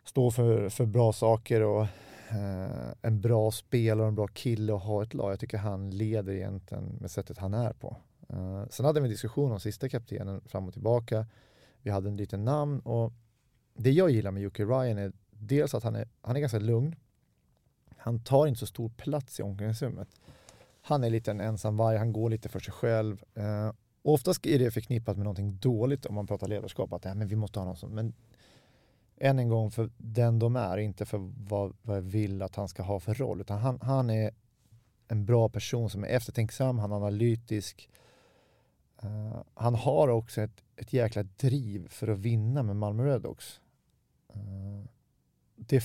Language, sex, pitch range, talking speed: Swedish, male, 105-125 Hz, 195 wpm